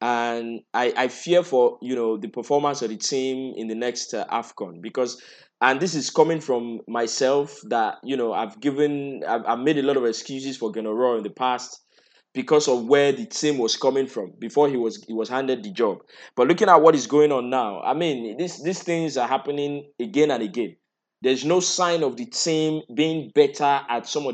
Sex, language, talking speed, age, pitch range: male, English, 210 wpm, 20-39, 120-155 Hz